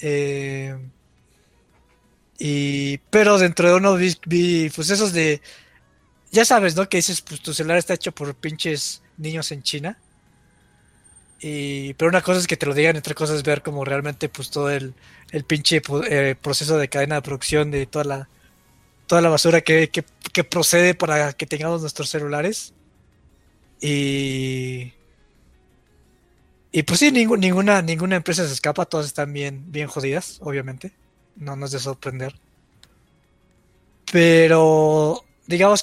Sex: male